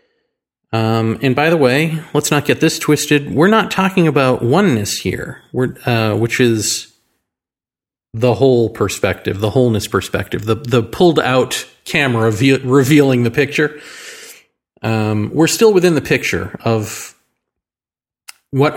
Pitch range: 110-145 Hz